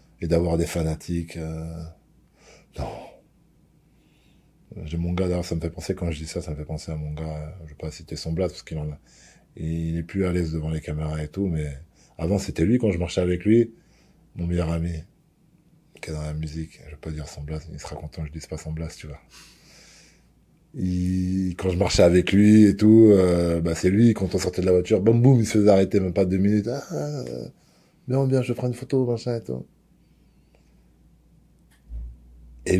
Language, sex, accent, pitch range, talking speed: French, male, French, 75-90 Hz, 215 wpm